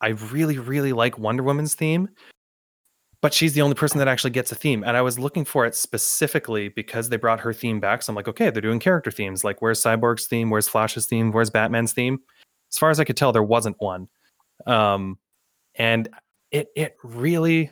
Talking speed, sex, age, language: 210 wpm, male, 20-39, English